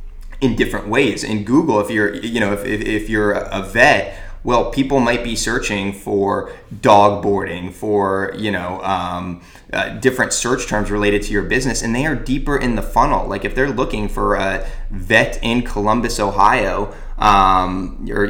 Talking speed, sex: 175 wpm, male